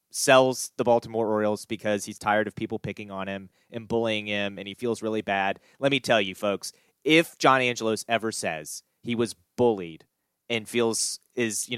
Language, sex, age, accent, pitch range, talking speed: English, male, 30-49, American, 110-135 Hz, 190 wpm